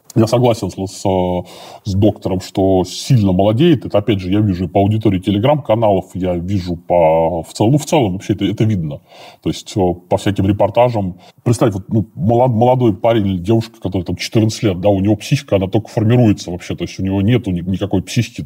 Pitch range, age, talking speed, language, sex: 95-115 Hz, 20-39, 190 wpm, Russian, female